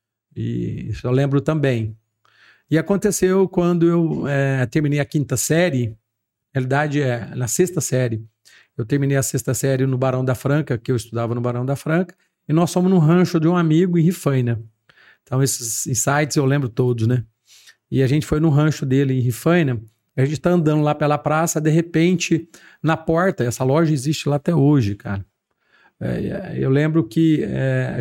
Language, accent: Portuguese, Brazilian